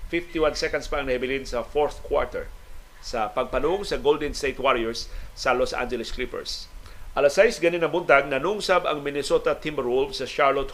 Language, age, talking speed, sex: Filipino, 40-59, 150 wpm, male